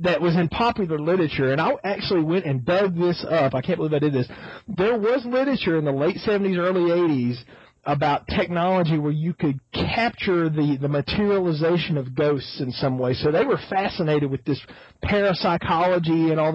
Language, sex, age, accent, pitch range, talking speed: English, male, 40-59, American, 150-185 Hz, 185 wpm